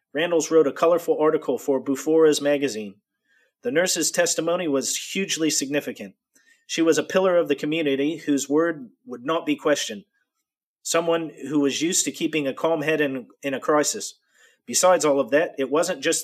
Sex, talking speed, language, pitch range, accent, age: male, 175 wpm, English, 140-165 Hz, American, 40-59